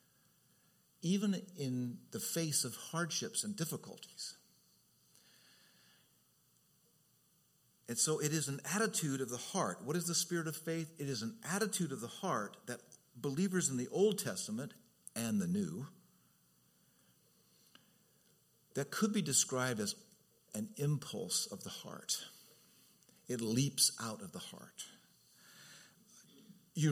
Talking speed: 125 wpm